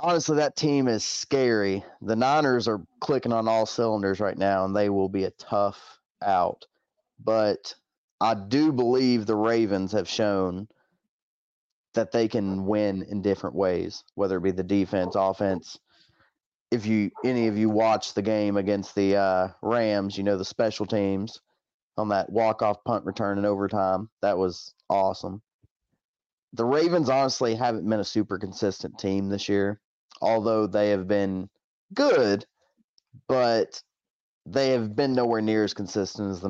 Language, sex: English, male